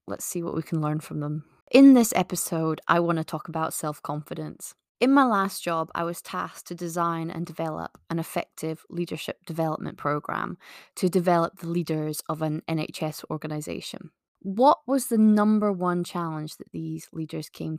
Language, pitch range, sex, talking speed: English, 160-195 Hz, female, 170 wpm